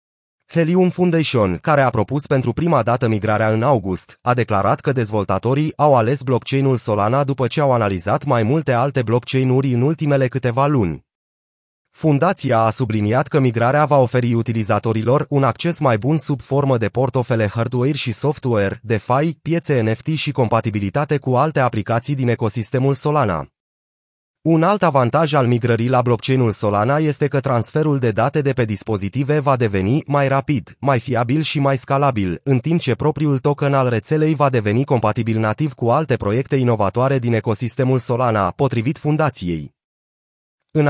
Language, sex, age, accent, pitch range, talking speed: Romanian, male, 30-49, native, 115-145 Hz, 160 wpm